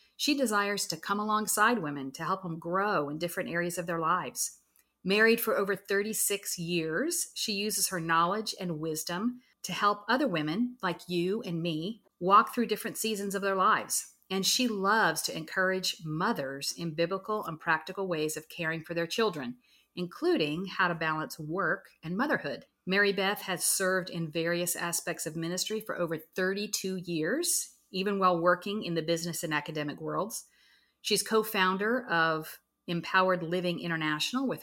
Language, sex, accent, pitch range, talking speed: English, female, American, 165-215 Hz, 165 wpm